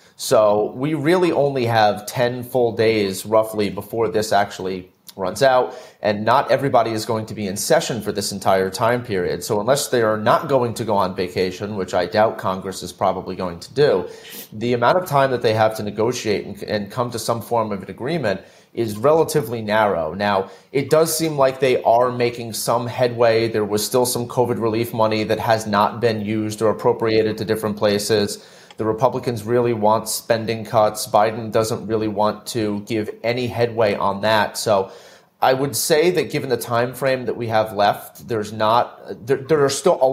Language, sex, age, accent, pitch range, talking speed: English, male, 30-49, American, 105-125 Hz, 195 wpm